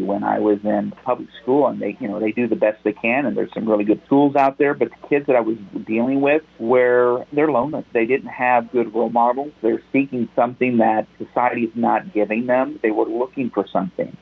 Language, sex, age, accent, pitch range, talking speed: English, male, 50-69, American, 110-135 Hz, 230 wpm